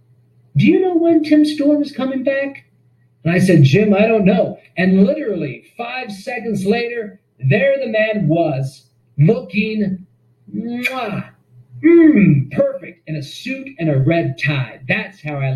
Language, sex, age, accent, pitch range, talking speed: English, male, 40-59, American, 140-210 Hz, 145 wpm